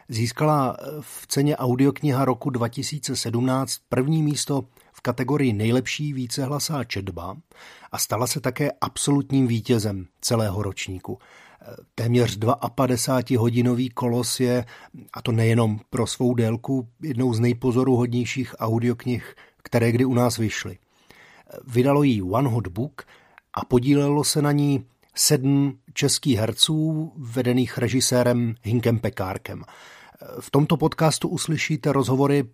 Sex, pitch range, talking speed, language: male, 115-135 Hz, 115 wpm, Slovak